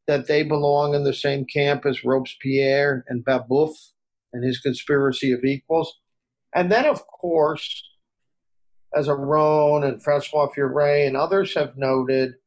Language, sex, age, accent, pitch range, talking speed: English, male, 50-69, American, 130-150 Hz, 140 wpm